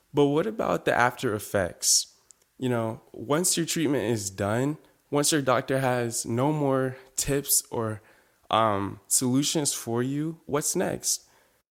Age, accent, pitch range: 20-39, American, 115-140 Hz